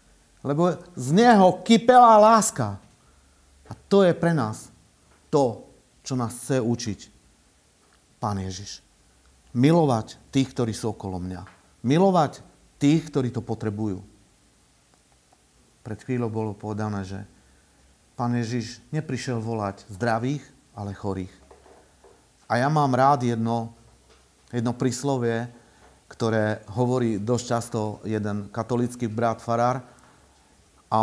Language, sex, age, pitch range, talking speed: Slovak, male, 50-69, 110-150 Hz, 110 wpm